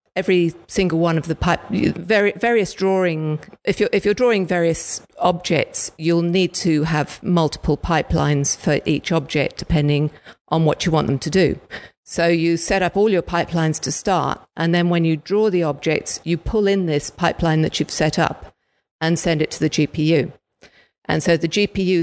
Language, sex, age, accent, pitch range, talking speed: English, female, 50-69, British, 155-185 Hz, 185 wpm